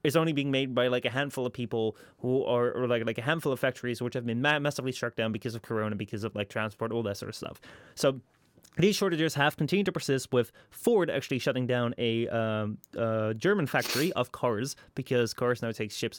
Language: English